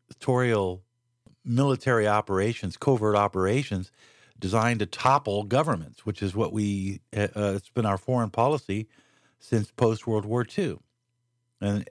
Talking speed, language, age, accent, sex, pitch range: 115 wpm, English, 50-69, American, male, 100-125 Hz